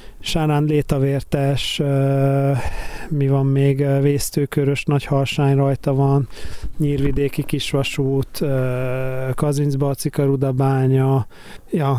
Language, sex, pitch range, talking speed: Hungarian, male, 135-150 Hz, 75 wpm